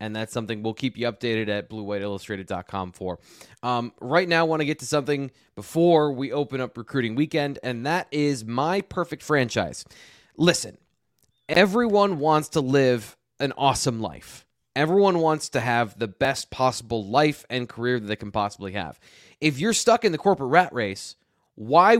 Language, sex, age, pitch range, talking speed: English, male, 20-39, 115-155 Hz, 170 wpm